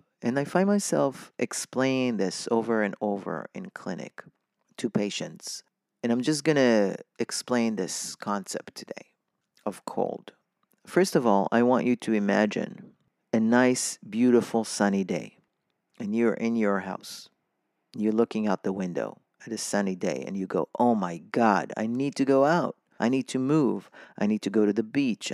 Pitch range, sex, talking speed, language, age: 105-140 Hz, male, 175 wpm, English, 40-59